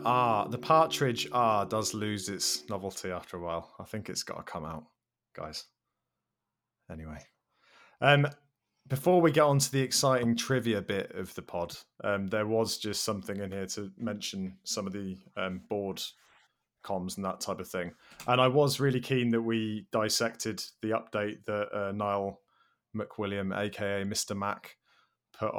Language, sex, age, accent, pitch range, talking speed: English, male, 20-39, British, 95-115 Hz, 170 wpm